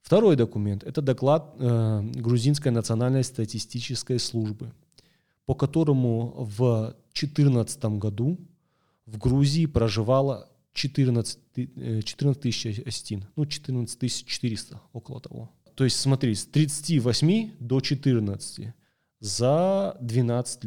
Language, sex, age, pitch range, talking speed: Russian, male, 30-49, 110-145 Hz, 100 wpm